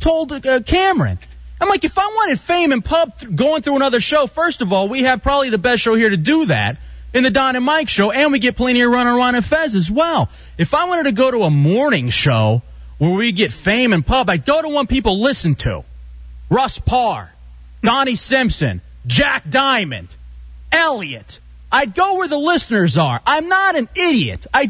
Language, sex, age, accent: English, male, 30-49, American